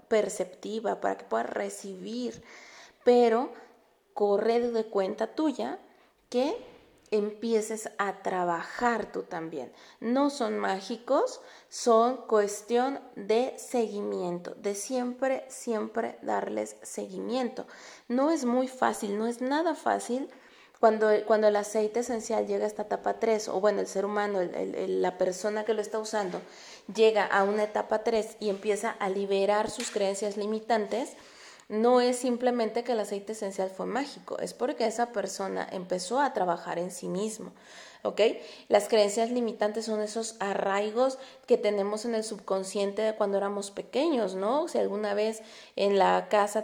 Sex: female